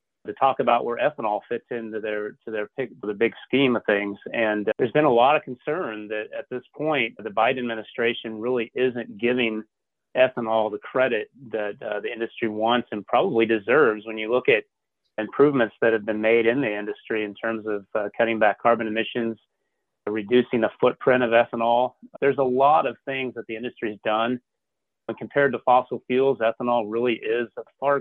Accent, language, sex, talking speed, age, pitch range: American, English, male, 195 wpm, 30-49, 110-125 Hz